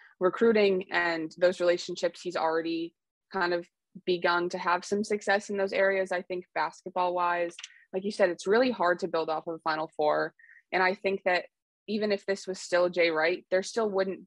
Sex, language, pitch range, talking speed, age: female, English, 165-185 Hz, 200 wpm, 20-39